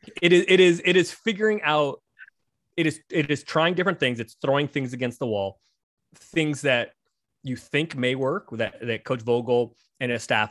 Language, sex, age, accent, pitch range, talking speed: English, male, 20-39, American, 115-140 Hz, 195 wpm